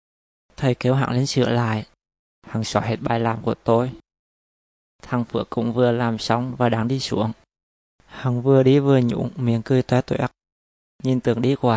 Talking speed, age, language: 185 wpm, 20-39, Vietnamese